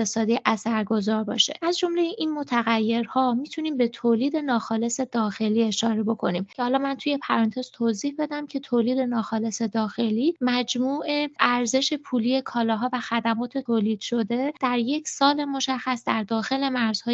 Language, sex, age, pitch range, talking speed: Persian, female, 20-39, 230-285 Hz, 140 wpm